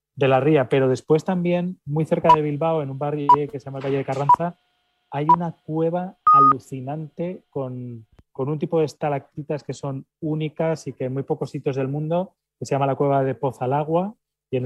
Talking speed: 200 wpm